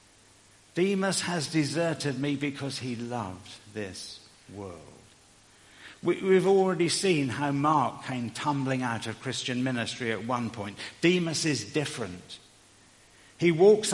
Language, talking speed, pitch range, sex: English, 120 wpm, 100-130 Hz, male